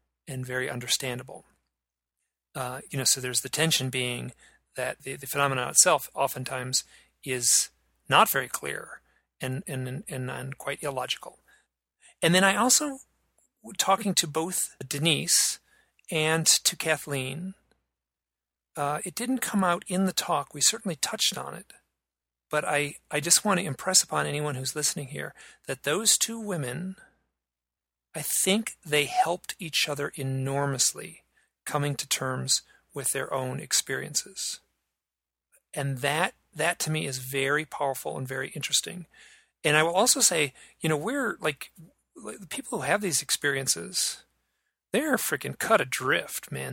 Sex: male